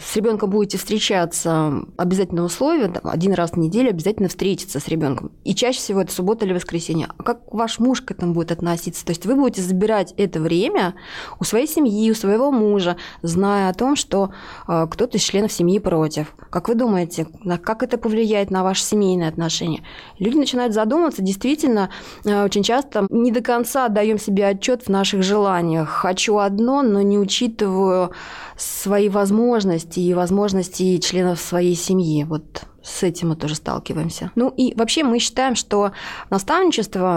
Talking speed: 165 wpm